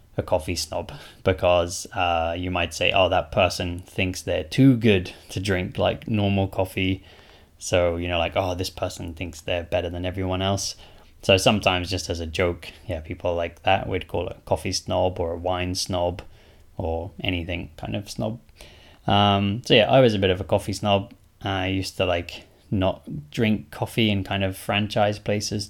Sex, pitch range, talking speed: male, 90-105 Hz, 190 wpm